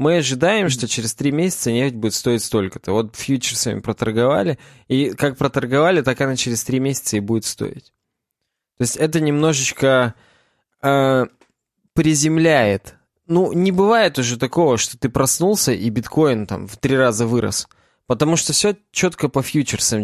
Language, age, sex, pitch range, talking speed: Russian, 20-39, male, 120-150 Hz, 155 wpm